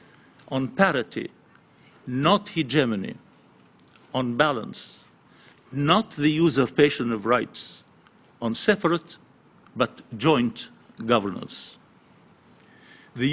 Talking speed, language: 75 wpm, English